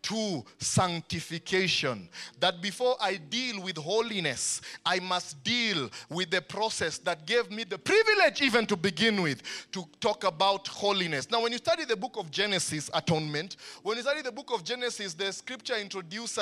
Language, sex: English, male